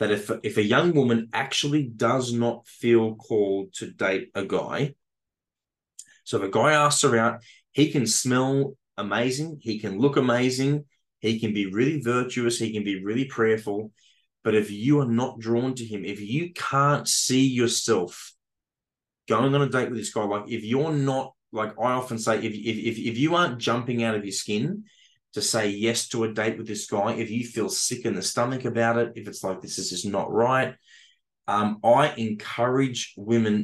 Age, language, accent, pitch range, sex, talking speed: 20-39, English, Australian, 110-130 Hz, male, 195 wpm